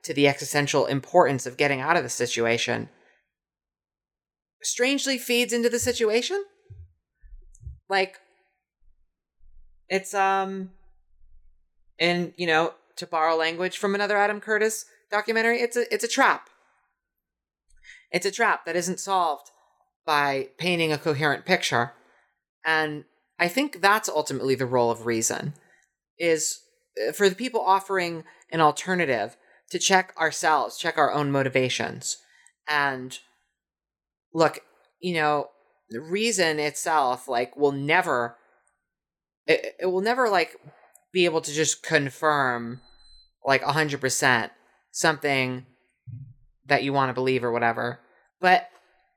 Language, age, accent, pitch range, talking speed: English, 30-49, American, 130-195 Hz, 120 wpm